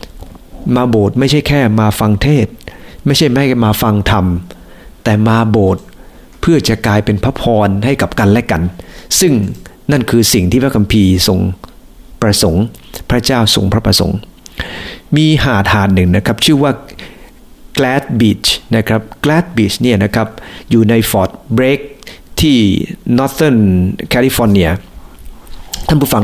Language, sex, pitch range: English, male, 100-135 Hz